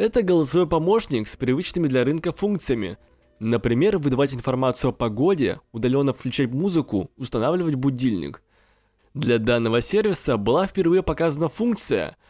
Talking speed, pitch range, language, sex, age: 120 wpm, 120-155 Hz, Russian, male, 20-39